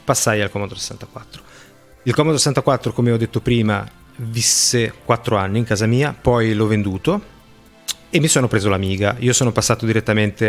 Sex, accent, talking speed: male, native, 165 wpm